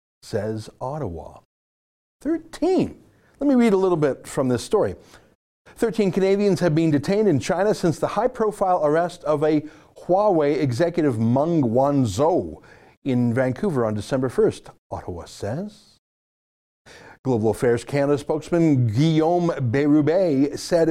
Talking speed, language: 125 wpm, English